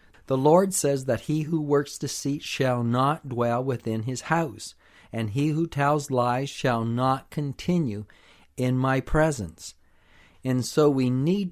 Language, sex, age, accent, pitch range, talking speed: English, male, 50-69, American, 115-150 Hz, 150 wpm